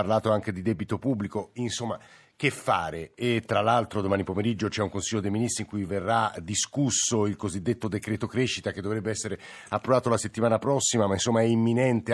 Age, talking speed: 50-69, 190 wpm